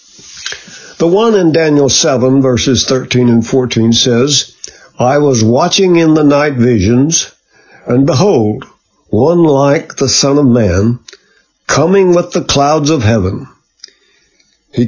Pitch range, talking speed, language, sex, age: 115-155 Hz, 130 wpm, English, male, 60-79